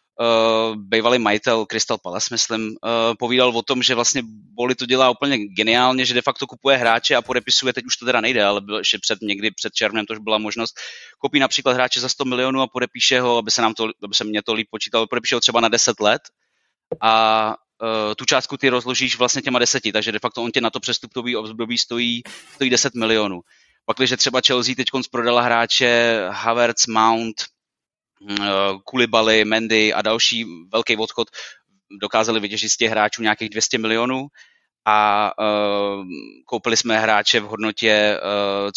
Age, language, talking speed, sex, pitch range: 20-39, Slovak, 180 wpm, male, 110-125 Hz